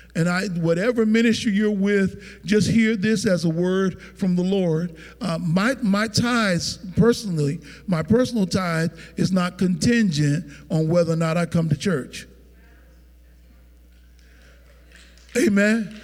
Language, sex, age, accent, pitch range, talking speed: English, male, 50-69, American, 160-210 Hz, 130 wpm